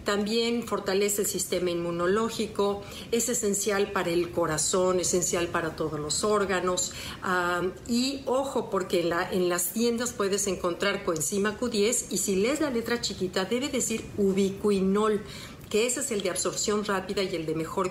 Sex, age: female, 50-69